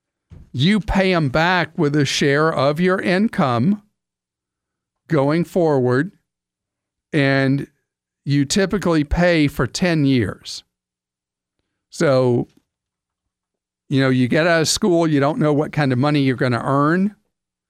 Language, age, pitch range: English, 50-69, 130-160 Hz